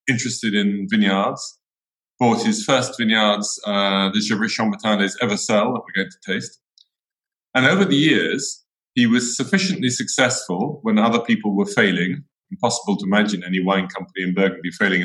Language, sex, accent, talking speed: English, male, British, 155 wpm